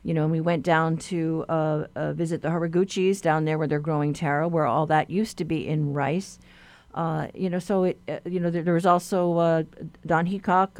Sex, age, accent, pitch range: female, 50-69, American, 165-200 Hz